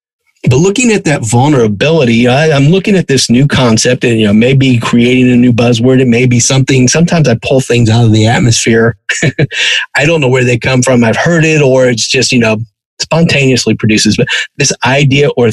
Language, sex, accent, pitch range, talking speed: English, male, American, 115-135 Hz, 195 wpm